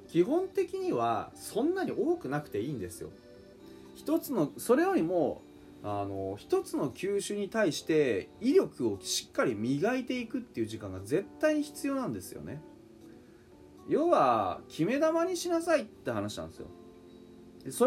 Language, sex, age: Japanese, male, 30-49